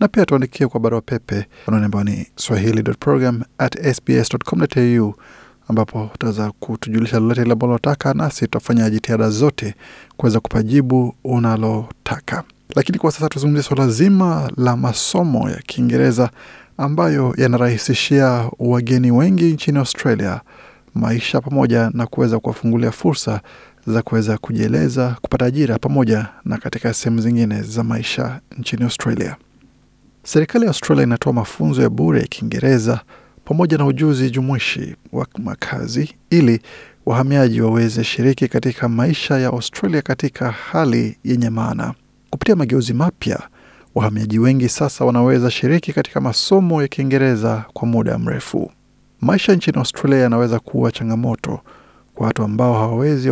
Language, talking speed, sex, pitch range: Swahili, 120 wpm, male, 115-140 Hz